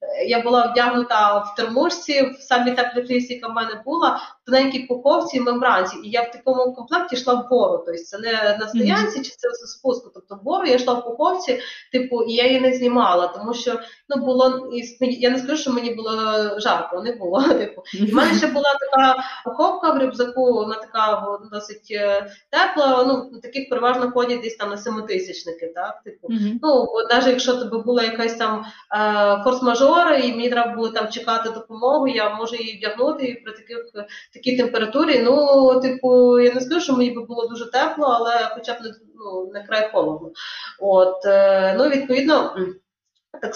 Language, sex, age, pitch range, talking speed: Ukrainian, female, 30-49, 215-255 Hz, 175 wpm